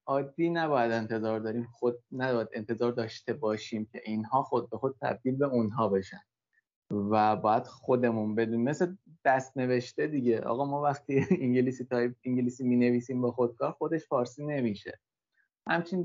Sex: male